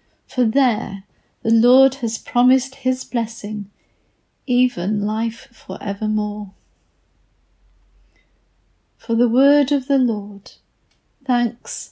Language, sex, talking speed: English, female, 95 wpm